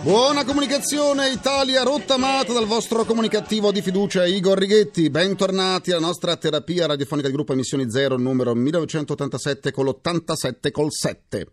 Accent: native